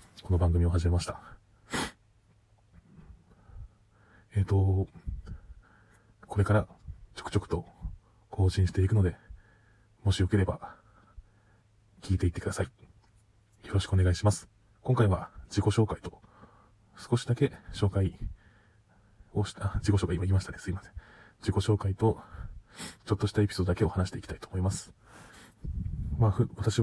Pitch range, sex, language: 95-110 Hz, male, Japanese